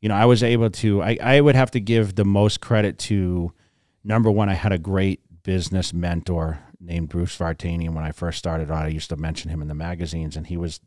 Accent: American